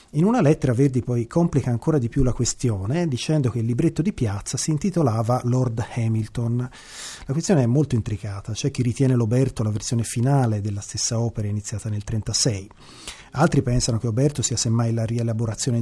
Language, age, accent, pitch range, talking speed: Italian, 30-49, native, 105-130 Hz, 180 wpm